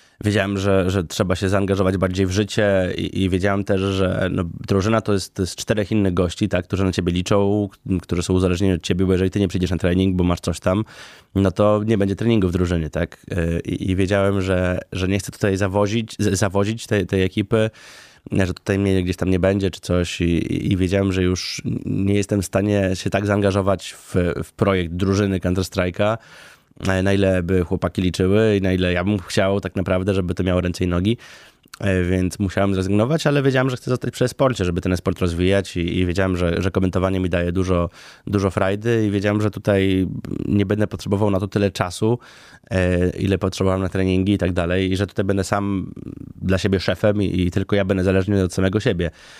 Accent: native